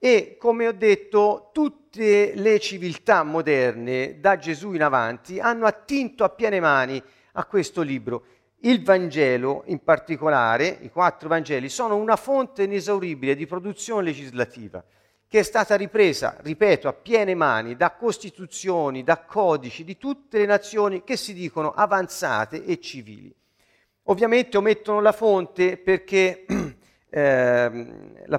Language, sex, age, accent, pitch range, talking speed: Italian, male, 50-69, native, 150-210 Hz, 135 wpm